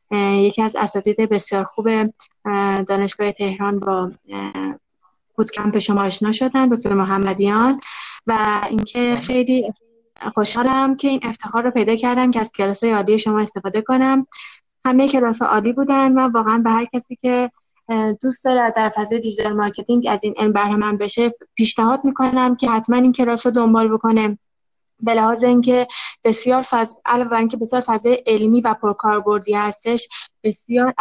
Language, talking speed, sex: Persian, 140 wpm, female